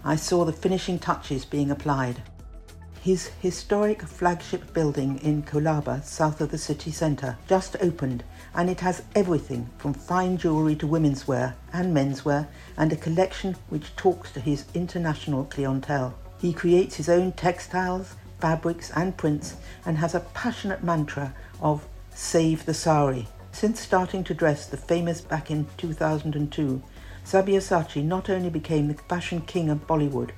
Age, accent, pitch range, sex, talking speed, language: 60-79, British, 145-175 Hz, female, 150 wpm, English